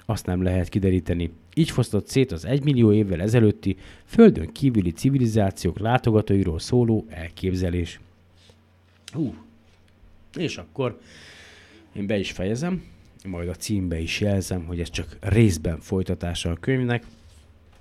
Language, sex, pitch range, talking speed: Hungarian, male, 90-110 Hz, 120 wpm